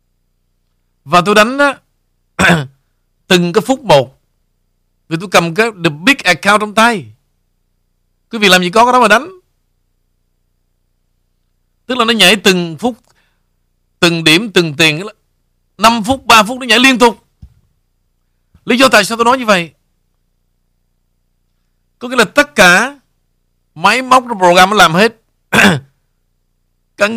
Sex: male